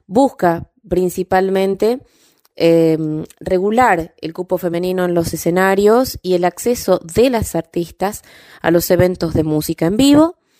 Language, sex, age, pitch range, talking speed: Spanish, female, 20-39, 160-195 Hz, 130 wpm